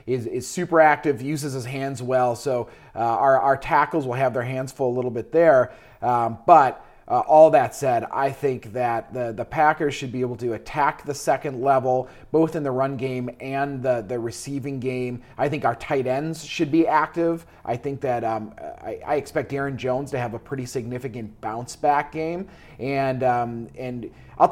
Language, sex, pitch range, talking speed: English, male, 125-155 Hz, 195 wpm